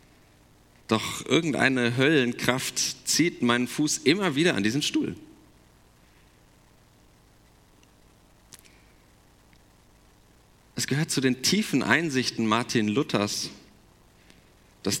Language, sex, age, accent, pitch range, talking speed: German, male, 40-59, German, 95-125 Hz, 80 wpm